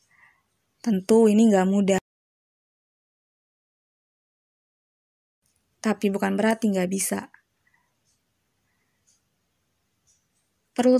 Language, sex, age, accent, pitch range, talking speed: Indonesian, female, 20-39, native, 200-230 Hz, 55 wpm